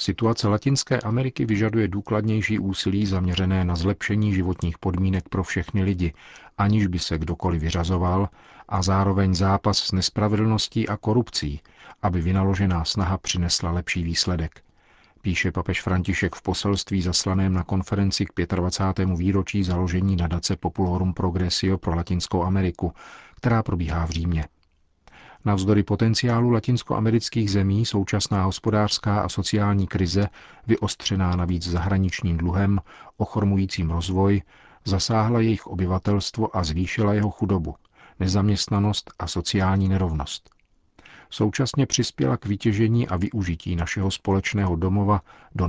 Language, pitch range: Czech, 90-105 Hz